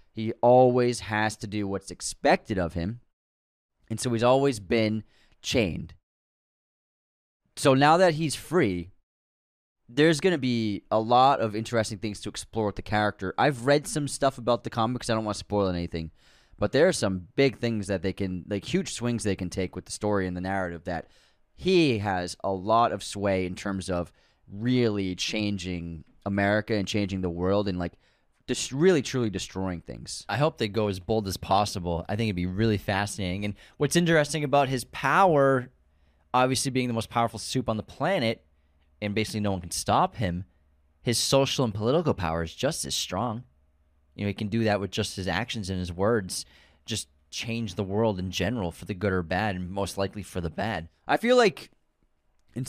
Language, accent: English, American